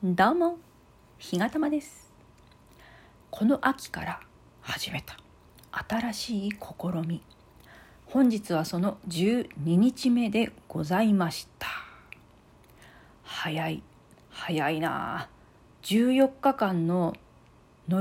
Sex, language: female, Japanese